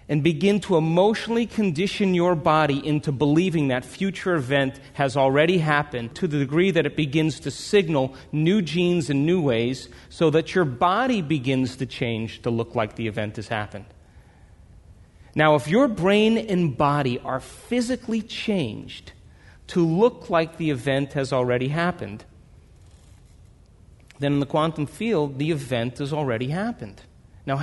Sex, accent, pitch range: male, American, 120-195 Hz